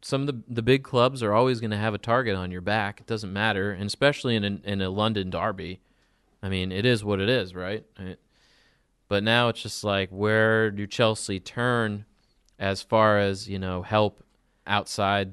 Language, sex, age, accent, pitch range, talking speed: English, male, 30-49, American, 95-110 Hz, 210 wpm